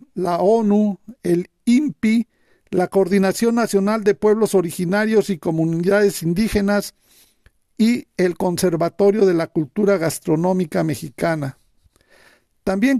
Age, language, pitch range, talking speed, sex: 50-69, Spanish, 180-215 Hz, 100 wpm, male